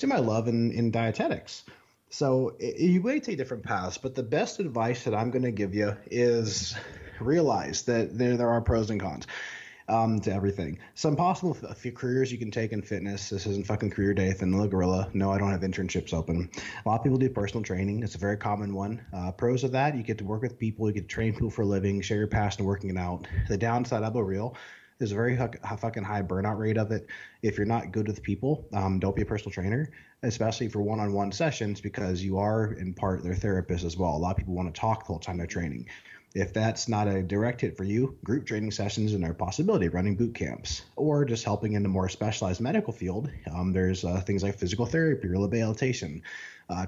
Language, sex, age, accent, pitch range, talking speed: English, male, 30-49, American, 95-115 Hz, 235 wpm